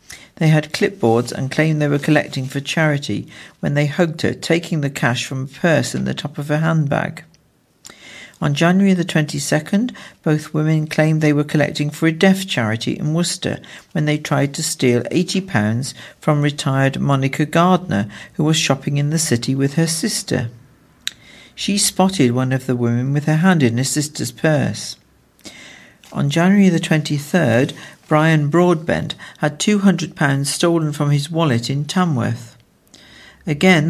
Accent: British